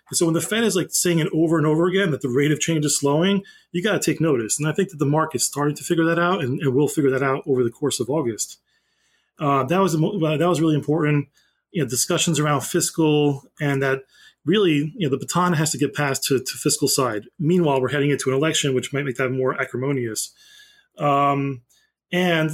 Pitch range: 140-170 Hz